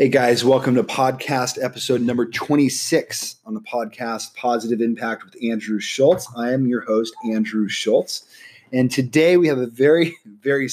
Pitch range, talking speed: 110-130 Hz, 160 wpm